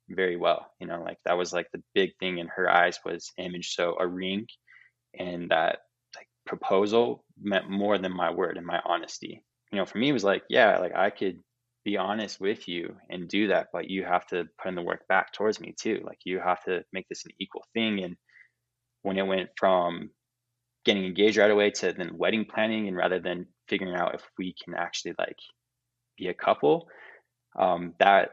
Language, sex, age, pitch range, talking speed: English, male, 20-39, 90-115 Hz, 210 wpm